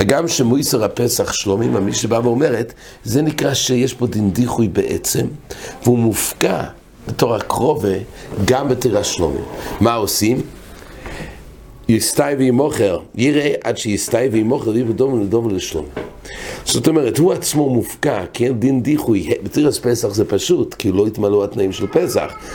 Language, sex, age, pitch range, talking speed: English, male, 60-79, 110-150 Hz, 110 wpm